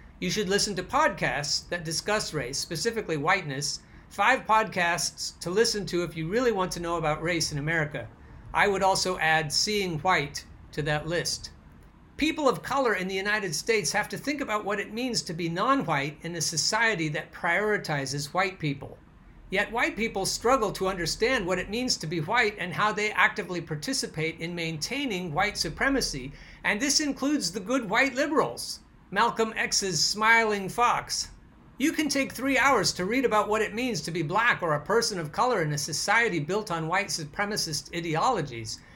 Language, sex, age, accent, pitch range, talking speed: English, male, 50-69, American, 160-220 Hz, 180 wpm